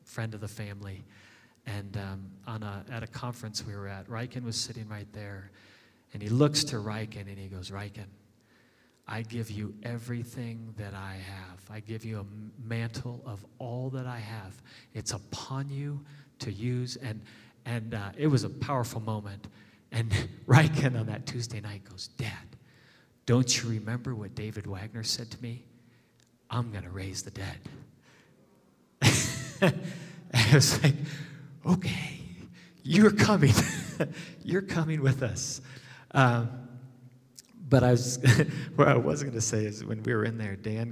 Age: 40-59